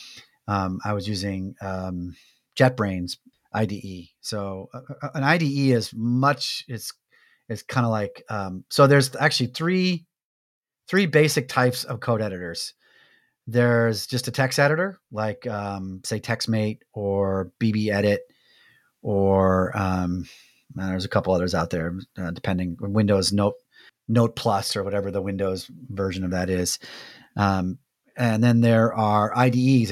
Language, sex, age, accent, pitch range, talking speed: English, male, 30-49, American, 100-120 Hz, 140 wpm